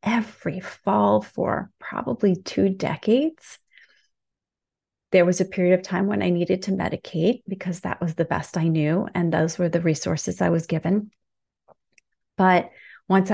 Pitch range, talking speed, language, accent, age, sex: 170-200 Hz, 155 wpm, English, American, 30-49, female